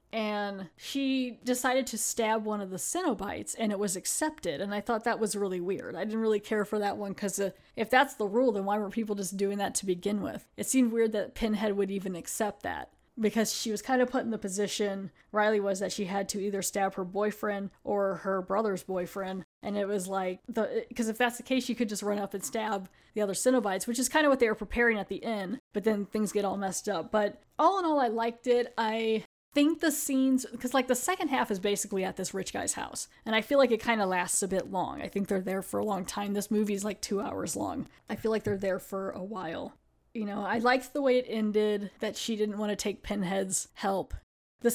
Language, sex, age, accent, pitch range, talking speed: English, female, 10-29, American, 200-235 Hz, 250 wpm